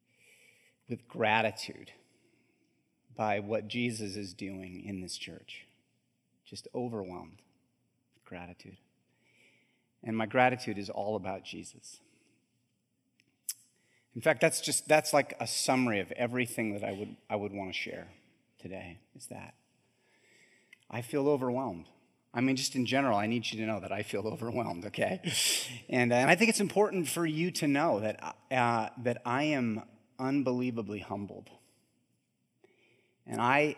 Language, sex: English, male